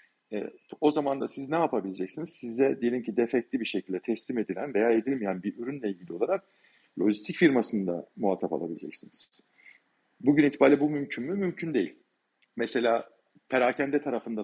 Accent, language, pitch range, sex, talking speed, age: native, Turkish, 110-135 Hz, male, 145 wpm, 50-69